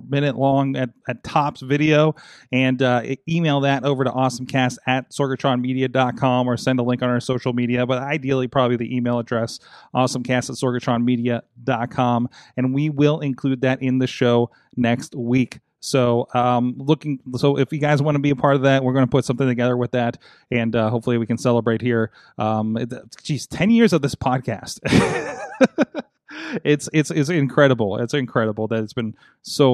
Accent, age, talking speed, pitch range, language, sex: American, 30-49, 185 wpm, 120-140 Hz, English, male